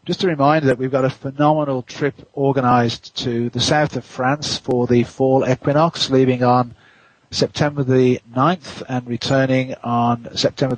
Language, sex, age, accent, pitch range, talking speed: English, male, 40-59, British, 120-140 Hz, 155 wpm